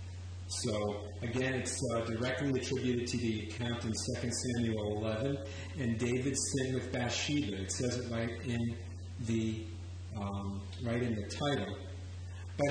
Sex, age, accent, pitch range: male, 40-59, American, 90-135 Hz